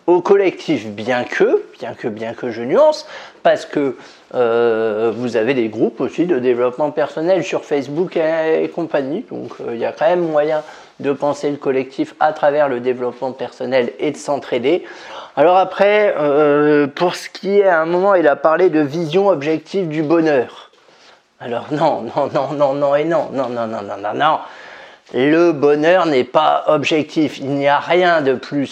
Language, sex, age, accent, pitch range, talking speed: French, male, 30-49, French, 140-190 Hz, 180 wpm